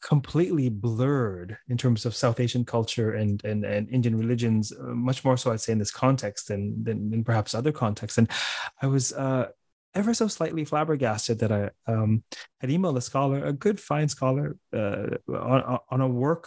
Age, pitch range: 30-49, 115-140 Hz